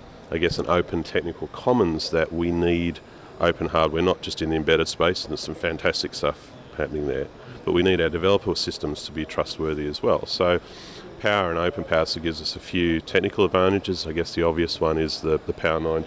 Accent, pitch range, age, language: Australian, 80-85 Hz, 40-59, English